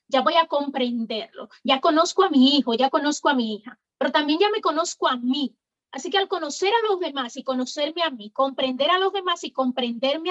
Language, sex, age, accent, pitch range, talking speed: English, female, 30-49, American, 260-340 Hz, 220 wpm